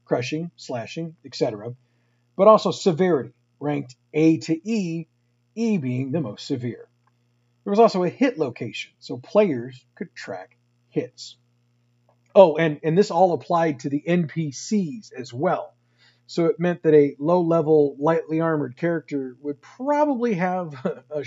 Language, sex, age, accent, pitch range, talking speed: English, male, 50-69, American, 120-185 Hz, 140 wpm